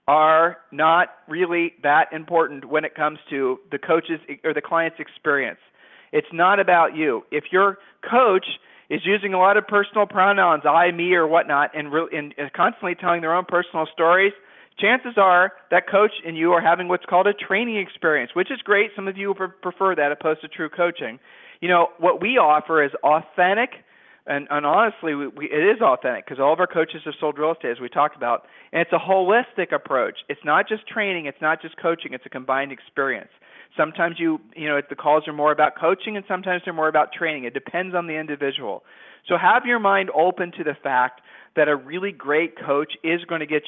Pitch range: 145-180 Hz